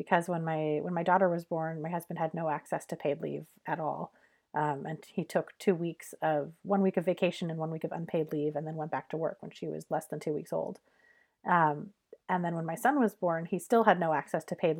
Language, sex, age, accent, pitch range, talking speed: English, female, 30-49, American, 160-195 Hz, 260 wpm